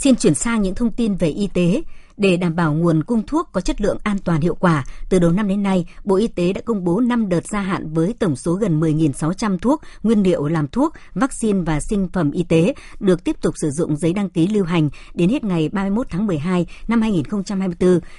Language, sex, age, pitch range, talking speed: Vietnamese, male, 60-79, 165-210 Hz, 235 wpm